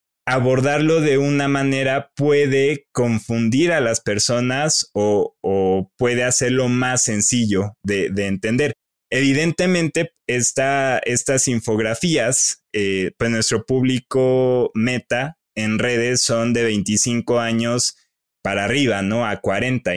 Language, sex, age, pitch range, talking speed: Spanish, male, 20-39, 115-145 Hz, 110 wpm